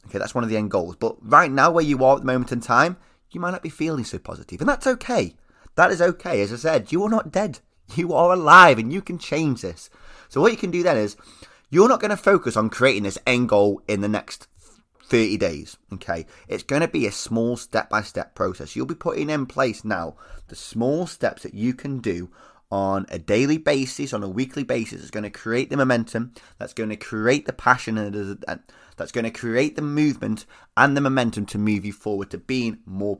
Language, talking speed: English, 230 wpm